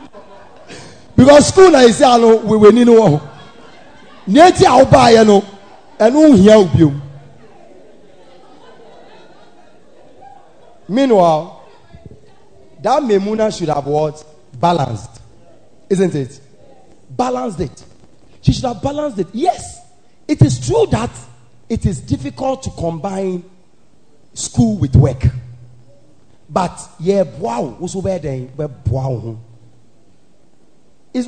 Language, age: English, 40-59